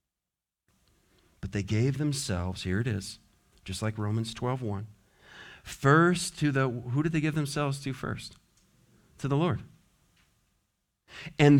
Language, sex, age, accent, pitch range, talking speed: English, male, 40-59, American, 105-155 Hz, 130 wpm